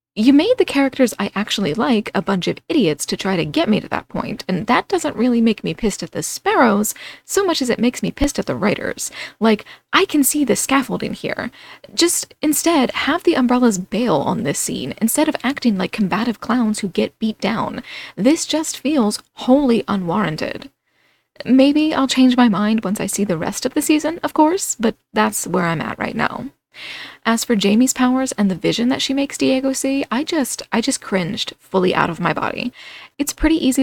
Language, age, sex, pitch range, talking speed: English, 20-39, female, 210-270 Hz, 210 wpm